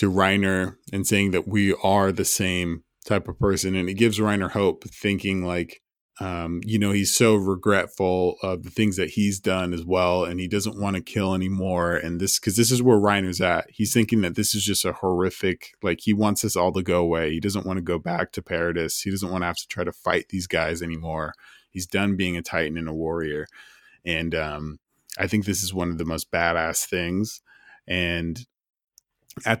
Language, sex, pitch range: English, male, 90-105 Hz